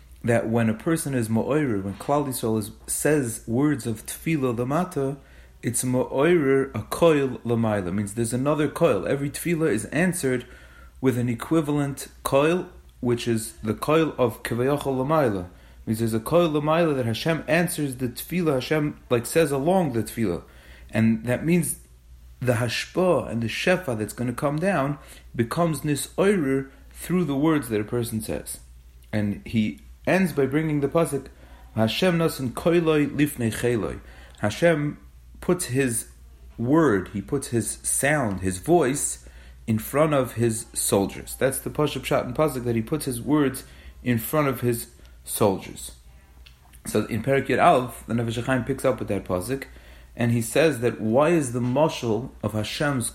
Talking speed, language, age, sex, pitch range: 160 wpm, English, 30-49, male, 105-145 Hz